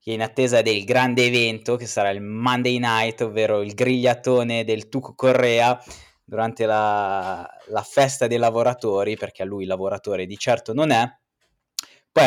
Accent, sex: native, male